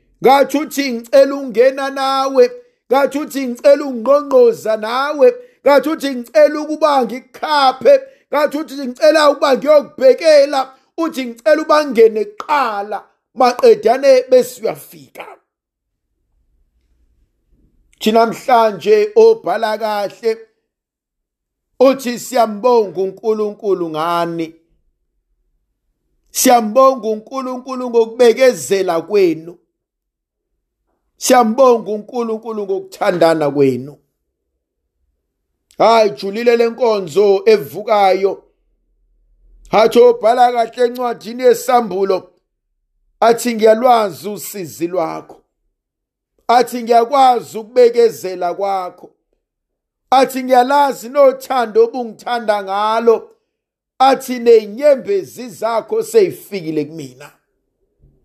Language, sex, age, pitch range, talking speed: English, male, 50-69, 205-280 Hz, 65 wpm